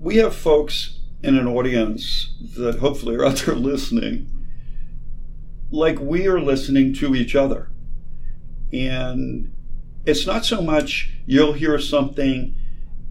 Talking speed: 125 wpm